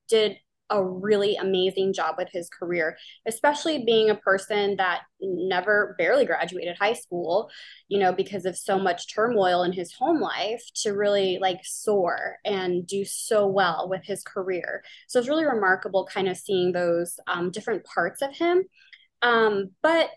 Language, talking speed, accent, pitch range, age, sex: English, 165 wpm, American, 185-230 Hz, 20-39, female